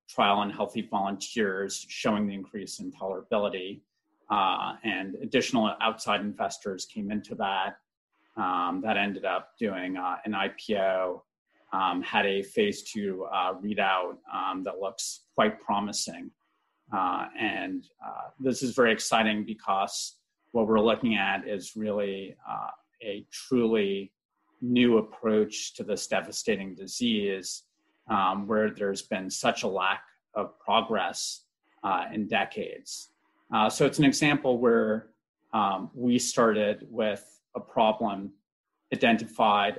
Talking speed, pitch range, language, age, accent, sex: 130 wpm, 100-120 Hz, English, 30-49, American, male